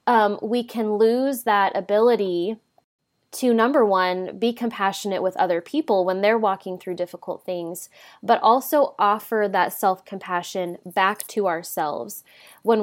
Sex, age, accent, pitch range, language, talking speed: female, 20-39, American, 185-220 Hz, English, 135 wpm